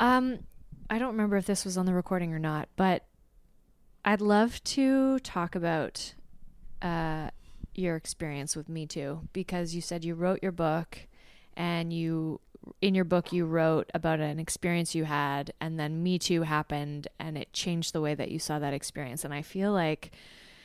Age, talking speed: 20-39, 180 wpm